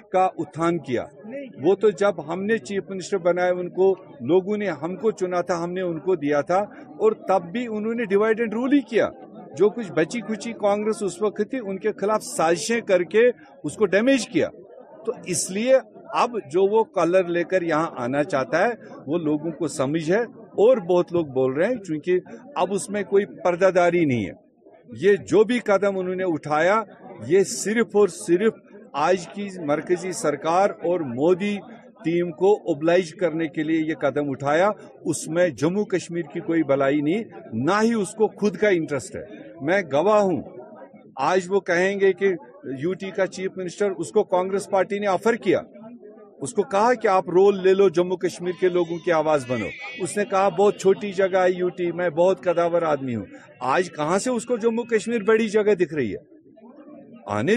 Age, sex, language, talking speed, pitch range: 50-69, male, Urdu, 190 wpm, 175-210 Hz